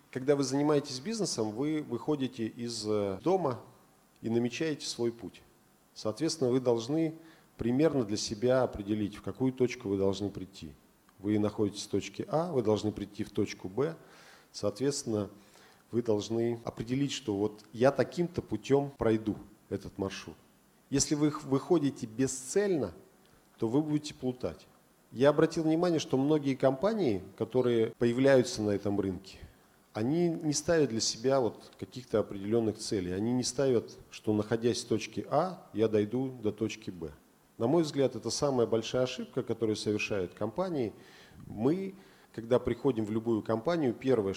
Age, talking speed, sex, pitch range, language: 40-59, 140 wpm, male, 105-135 Hz, Russian